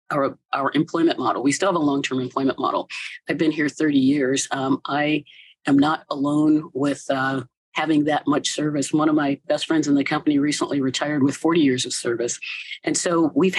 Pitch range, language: 140-185 Hz, English